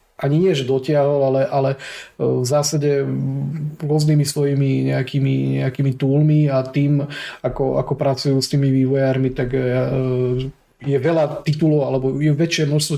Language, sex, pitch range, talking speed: Slovak, male, 125-140 Hz, 140 wpm